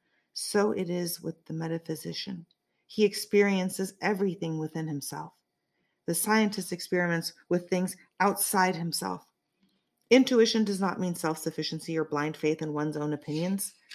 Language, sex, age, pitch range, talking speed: English, female, 40-59, 160-190 Hz, 130 wpm